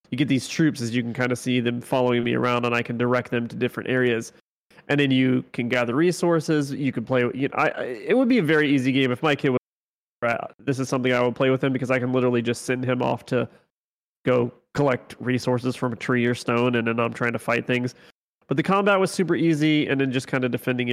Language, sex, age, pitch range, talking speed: English, male, 30-49, 125-145 Hz, 260 wpm